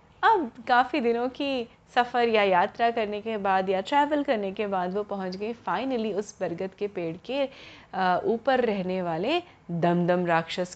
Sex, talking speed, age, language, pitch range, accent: female, 160 wpm, 30-49, Hindi, 170-240 Hz, native